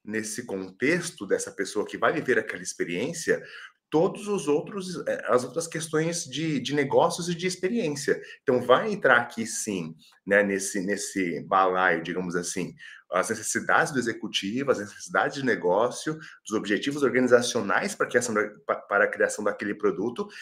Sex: male